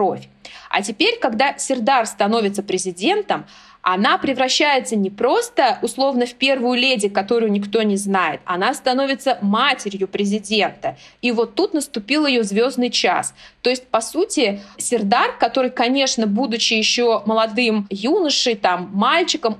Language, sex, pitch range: Russian, female, 215-255 Hz